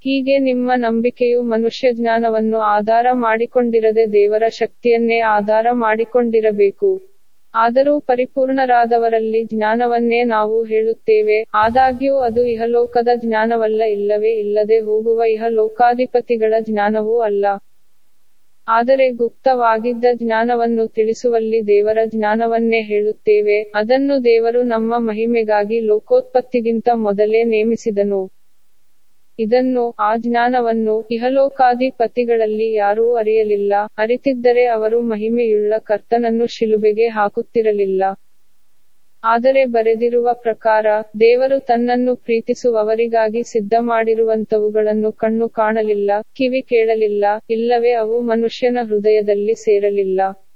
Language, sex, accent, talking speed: English, female, Indian, 75 wpm